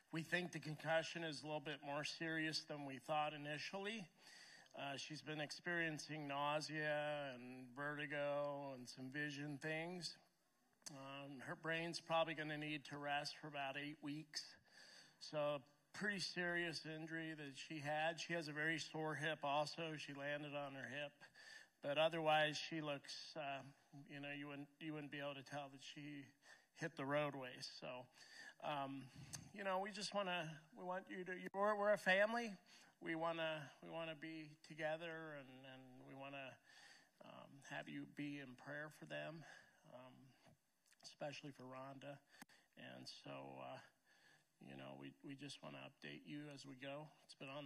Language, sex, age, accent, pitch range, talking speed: English, male, 40-59, American, 140-160 Hz, 170 wpm